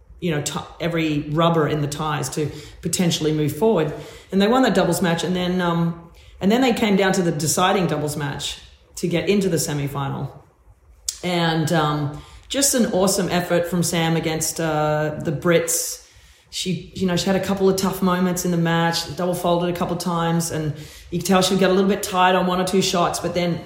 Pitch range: 150-180 Hz